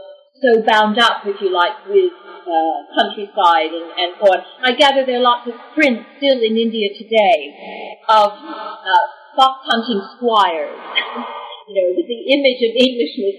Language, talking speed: English, 150 wpm